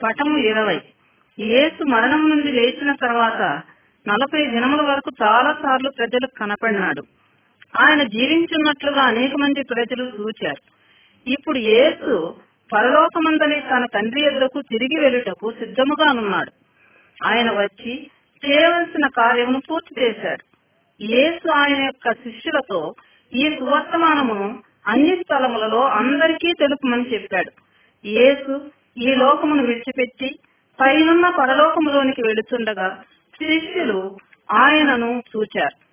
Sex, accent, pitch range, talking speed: female, native, 230-295 Hz, 35 wpm